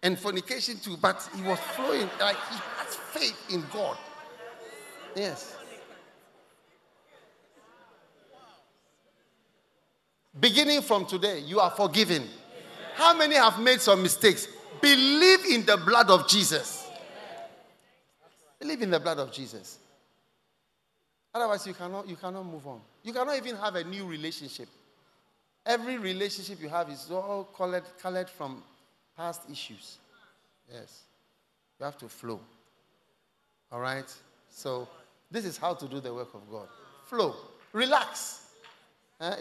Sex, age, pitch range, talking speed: male, 50-69, 145-210 Hz, 120 wpm